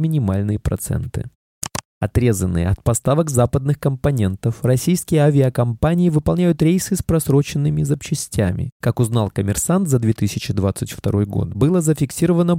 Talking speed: 105 wpm